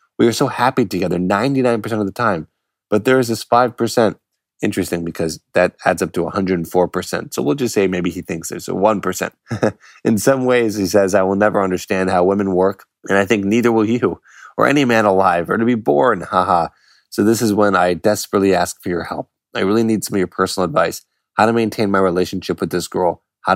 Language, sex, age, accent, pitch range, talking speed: English, male, 20-39, American, 90-105 Hz, 215 wpm